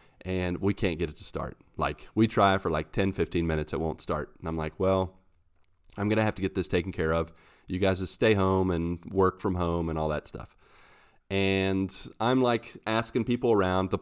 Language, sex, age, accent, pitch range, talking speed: English, male, 40-59, American, 85-105 Hz, 225 wpm